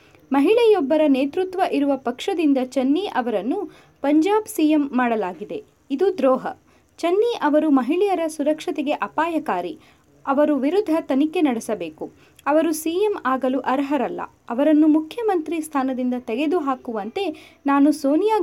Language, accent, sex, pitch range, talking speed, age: Kannada, native, female, 250-335 Hz, 100 wpm, 20-39